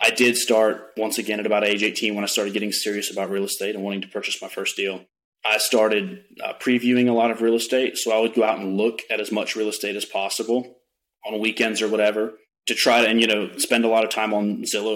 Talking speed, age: 255 wpm, 30-49